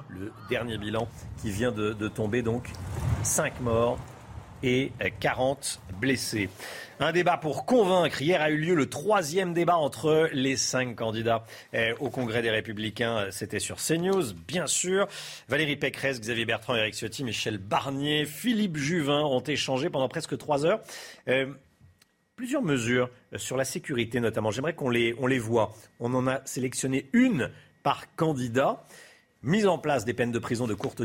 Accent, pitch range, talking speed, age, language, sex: French, 115-160 Hz, 160 wpm, 40-59, French, male